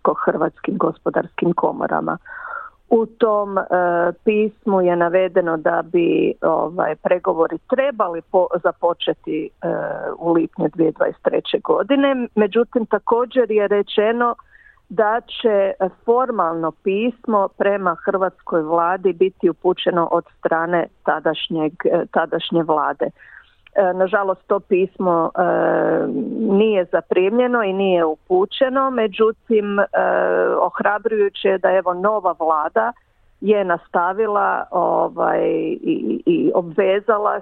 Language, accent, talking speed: Croatian, native, 100 wpm